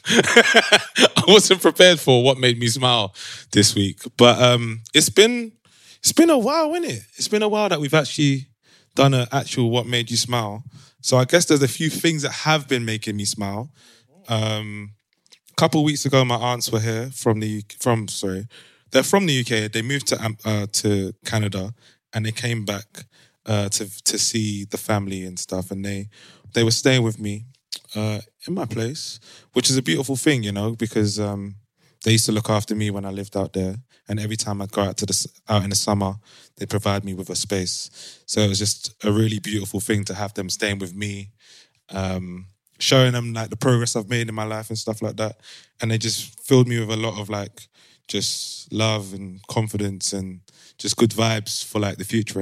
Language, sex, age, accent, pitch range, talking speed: English, male, 20-39, British, 105-130 Hz, 210 wpm